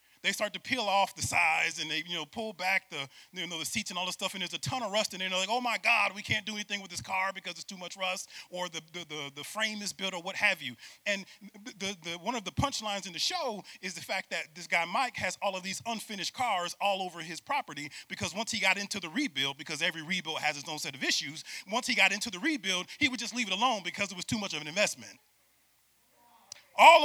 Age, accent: 30-49, American